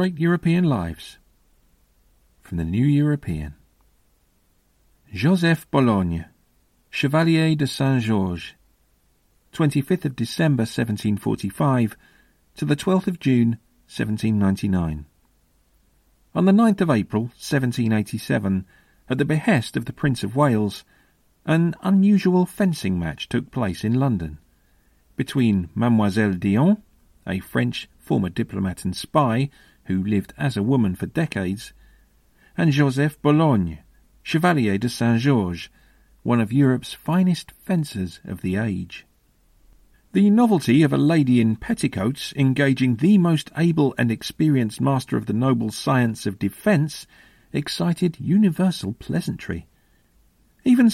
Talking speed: 125 wpm